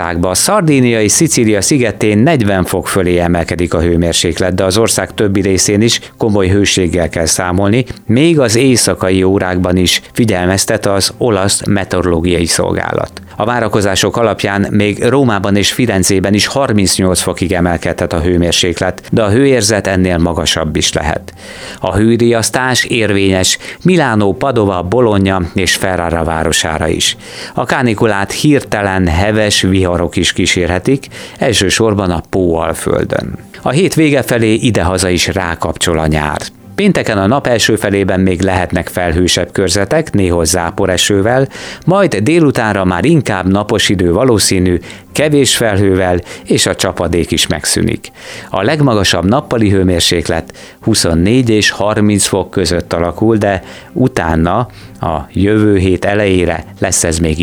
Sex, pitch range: male, 90-110 Hz